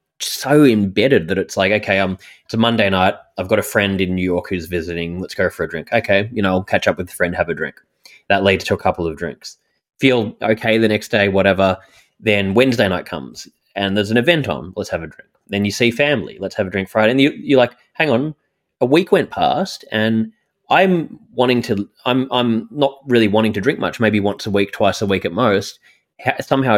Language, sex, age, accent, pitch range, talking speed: English, male, 20-39, Australian, 100-125 Hz, 235 wpm